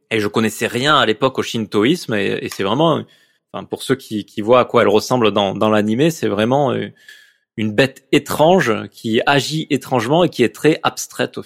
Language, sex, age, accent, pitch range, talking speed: French, male, 20-39, French, 115-150 Hz, 195 wpm